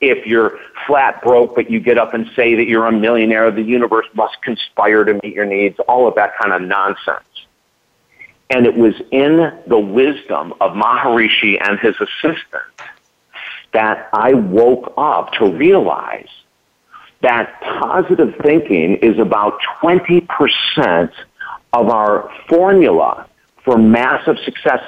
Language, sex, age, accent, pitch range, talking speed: English, male, 50-69, American, 115-160 Hz, 135 wpm